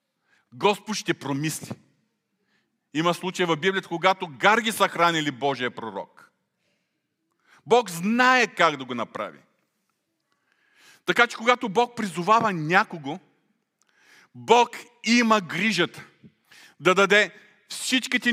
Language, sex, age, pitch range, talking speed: Bulgarian, male, 40-59, 170-215 Hz, 100 wpm